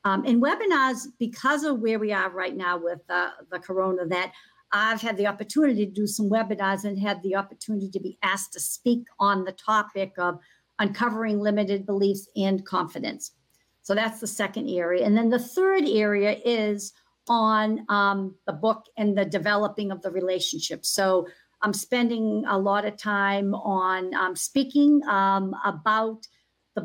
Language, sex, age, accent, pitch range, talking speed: English, female, 50-69, American, 195-230 Hz, 170 wpm